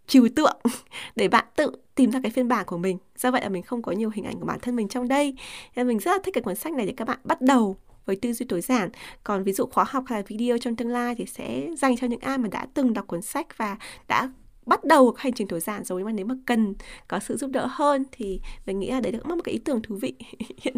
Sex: female